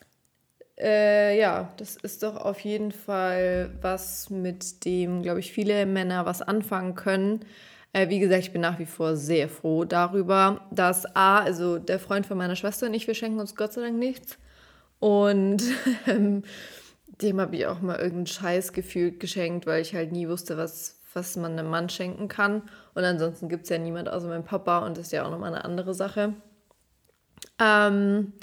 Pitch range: 180-215 Hz